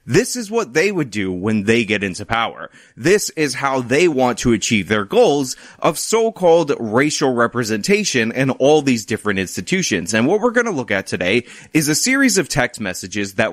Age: 30-49